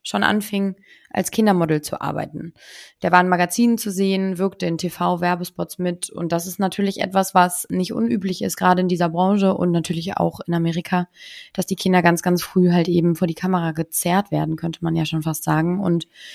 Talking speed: 200 wpm